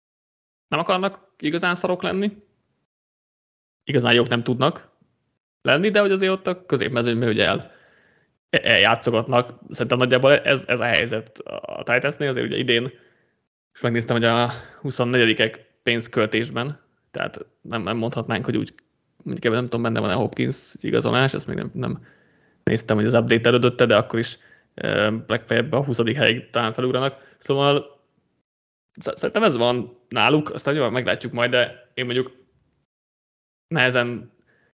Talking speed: 140 wpm